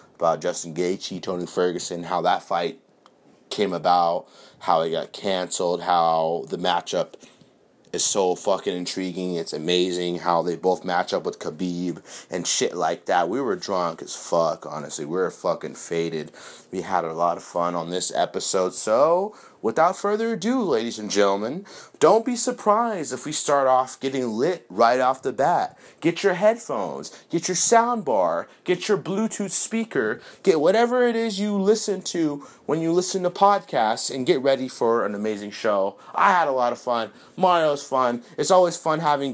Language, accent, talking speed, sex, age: English, American, 175 wpm, male, 30-49